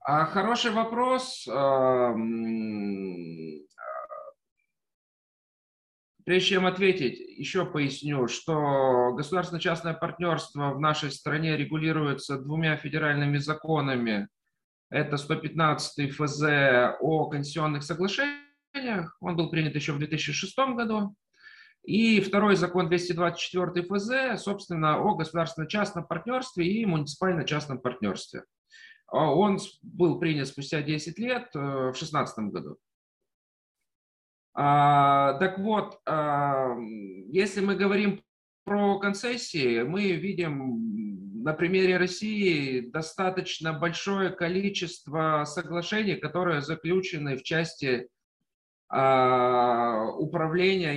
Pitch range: 140-190 Hz